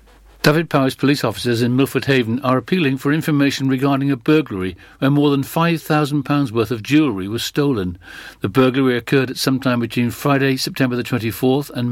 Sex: male